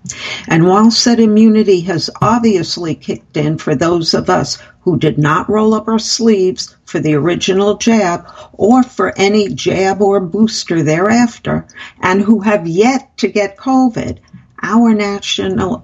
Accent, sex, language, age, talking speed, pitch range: American, female, English, 60-79, 150 wpm, 175-220 Hz